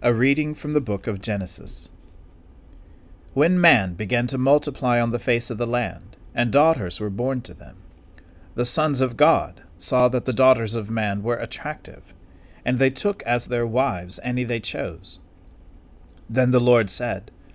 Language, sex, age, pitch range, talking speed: English, male, 40-59, 90-130 Hz, 170 wpm